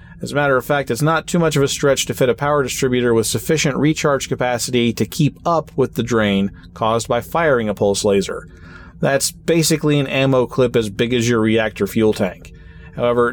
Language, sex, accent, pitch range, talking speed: English, male, American, 115-145 Hz, 205 wpm